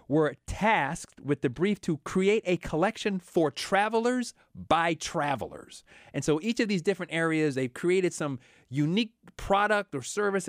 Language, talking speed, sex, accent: English, 155 wpm, male, American